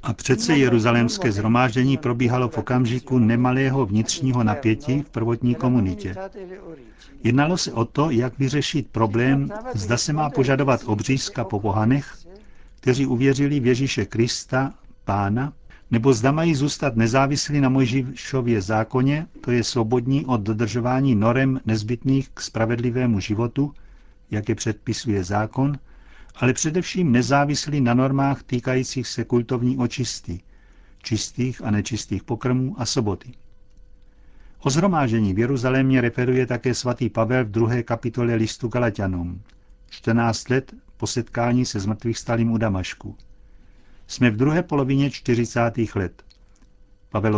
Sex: male